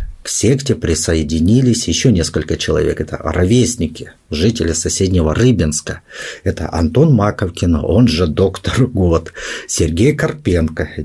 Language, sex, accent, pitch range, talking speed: Russian, male, native, 90-135 Hz, 110 wpm